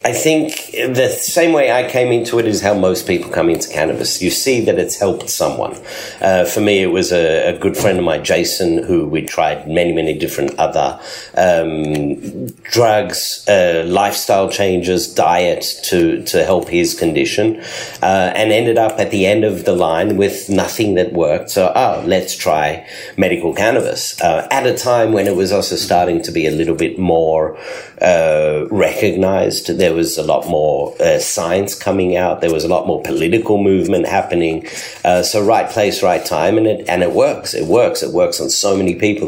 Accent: Australian